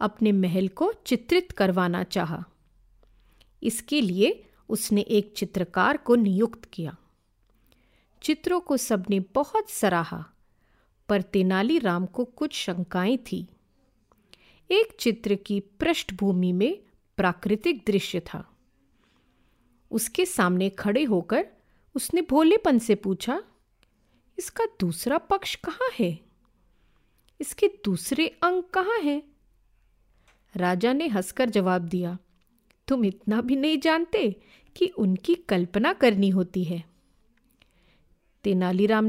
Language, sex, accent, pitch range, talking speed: Hindi, female, native, 190-305 Hz, 105 wpm